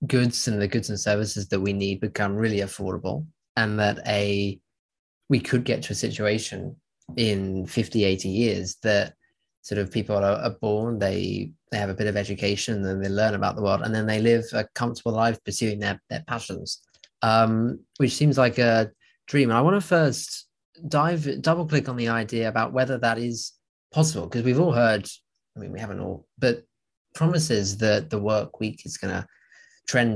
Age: 20-39